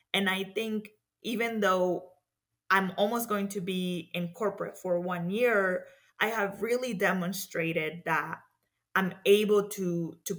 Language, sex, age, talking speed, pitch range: English, female, 20-39, 140 wpm, 170-200 Hz